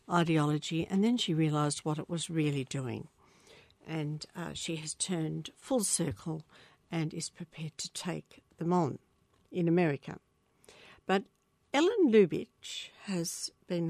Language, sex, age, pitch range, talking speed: English, female, 60-79, 160-210 Hz, 135 wpm